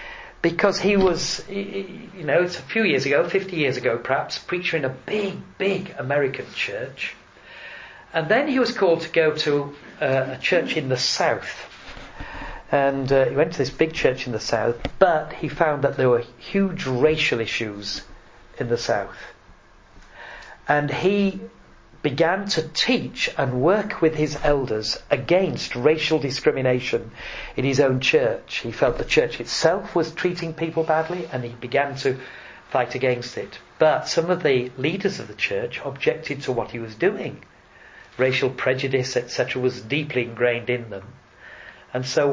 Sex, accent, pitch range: male, British, 130-185 Hz